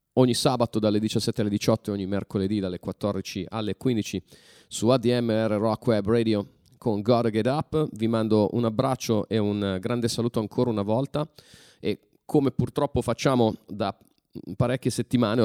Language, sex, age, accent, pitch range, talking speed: Italian, male, 30-49, native, 100-125 Hz, 155 wpm